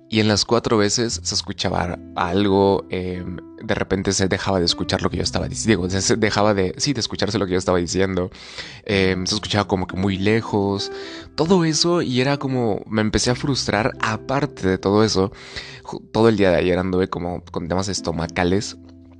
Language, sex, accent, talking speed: Spanish, male, Mexican, 155 wpm